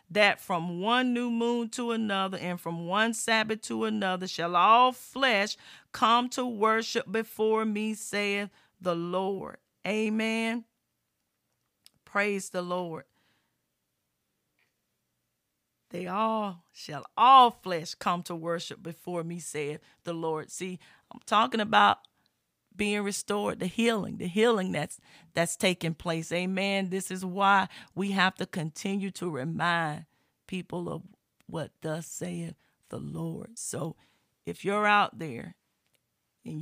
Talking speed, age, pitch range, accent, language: 130 wpm, 40-59, 175-210 Hz, American, English